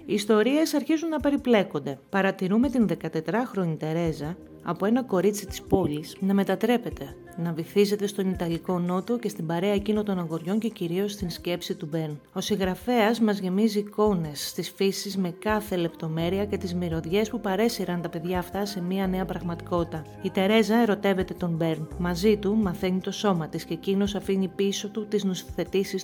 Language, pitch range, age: Greek, 170-205 Hz, 30-49